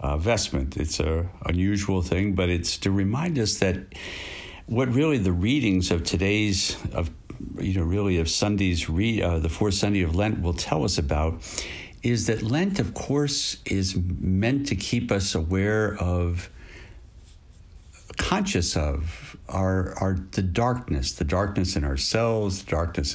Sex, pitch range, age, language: male, 85-105 Hz, 60-79, English